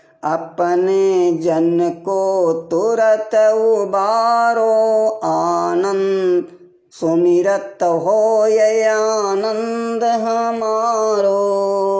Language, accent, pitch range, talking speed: Hindi, native, 200-235 Hz, 55 wpm